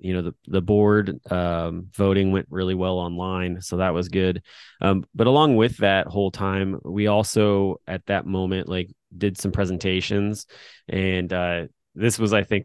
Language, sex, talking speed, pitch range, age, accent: English, male, 175 wpm, 90-105 Hz, 20-39, American